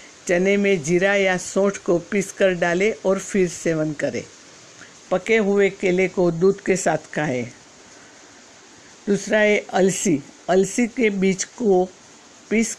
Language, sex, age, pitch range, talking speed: Hindi, female, 60-79, 175-200 Hz, 130 wpm